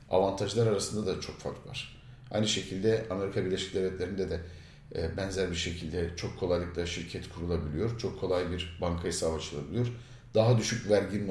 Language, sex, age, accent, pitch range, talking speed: Turkish, male, 50-69, native, 90-115 Hz, 150 wpm